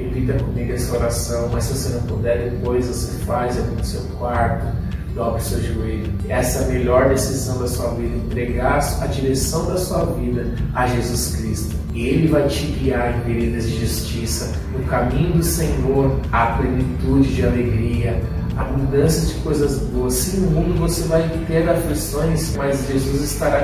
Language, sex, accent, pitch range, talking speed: Portuguese, male, Brazilian, 115-135 Hz, 175 wpm